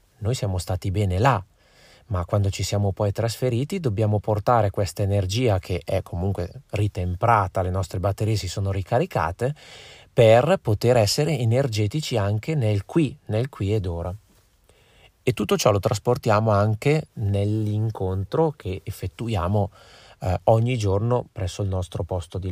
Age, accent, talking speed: 30-49, native, 140 wpm